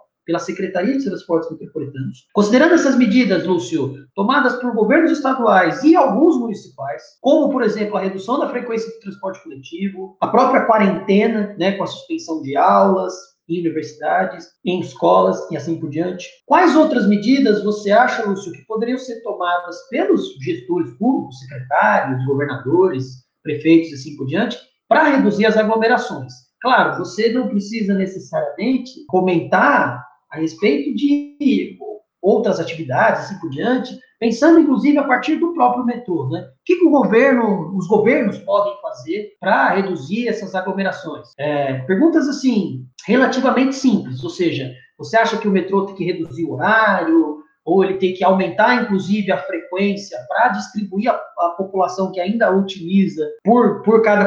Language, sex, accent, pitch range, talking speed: Portuguese, male, Brazilian, 180-245 Hz, 150 wpm